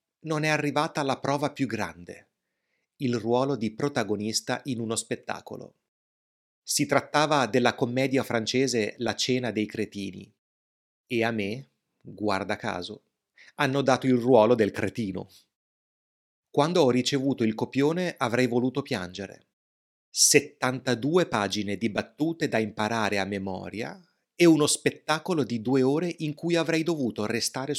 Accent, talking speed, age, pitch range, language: native, 130 wpm, 30-49, 110-140 Hz, Italian